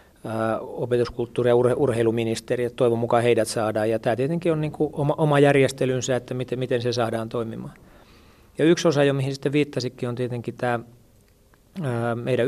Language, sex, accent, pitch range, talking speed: Finnish, male, native, 110-125 Hz, 160 wpm